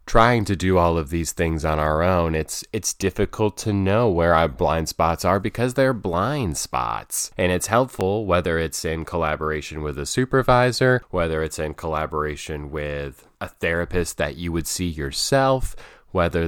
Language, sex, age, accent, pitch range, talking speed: English, male, 20-39, American, 75-90 Hz, 170 wpm